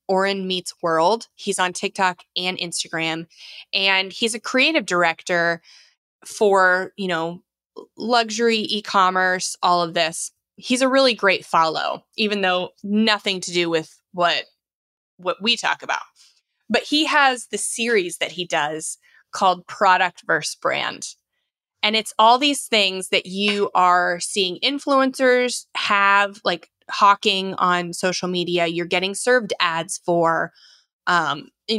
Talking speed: 135 wpm